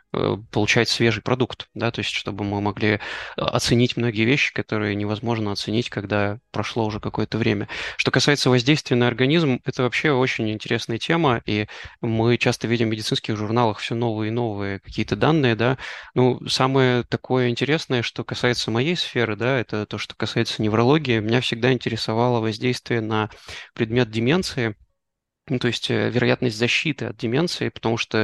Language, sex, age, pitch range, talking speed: Russian, male, 20-39, 110-130 Hz, 155 wpm